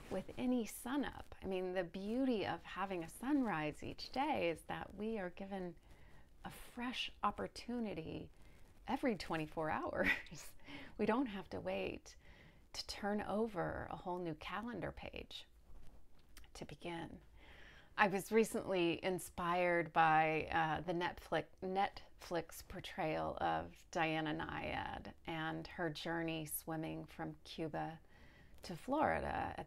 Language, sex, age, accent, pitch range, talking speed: English, female, 30-49, American, 160-250 Hz, 125 wpm